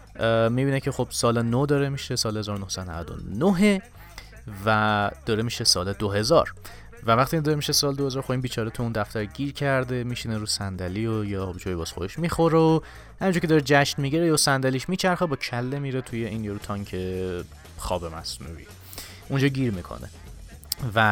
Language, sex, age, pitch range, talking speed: English, male, 30-49, 100-130 Hz, 175 wpm